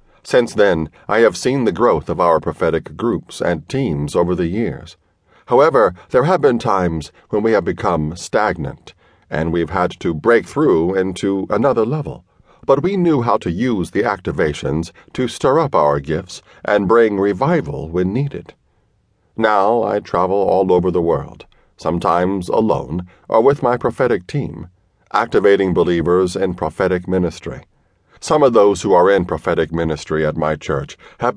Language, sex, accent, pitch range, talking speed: English, male, American, 80-115 Hz, 160 wpm